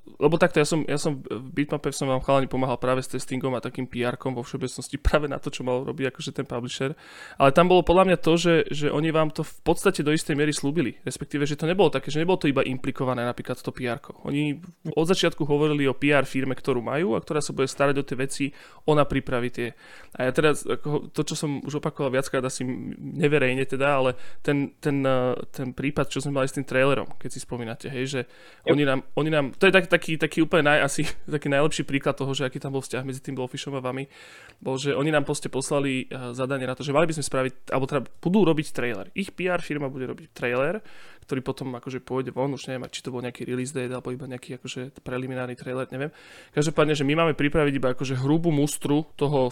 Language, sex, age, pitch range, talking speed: Slovak, male, 20-39, 130-150 Hz, 230 wpm